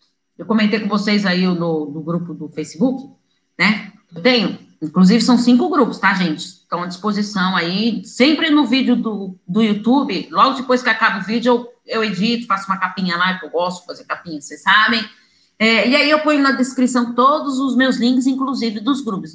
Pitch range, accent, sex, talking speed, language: 185-250 Hz, Brazilian, female, 200 wpm, Portuguese